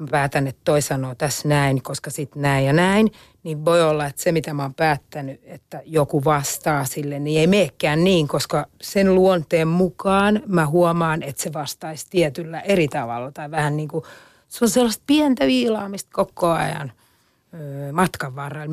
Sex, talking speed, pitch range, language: female, 175 wpm, 150-185 Hz, Finnish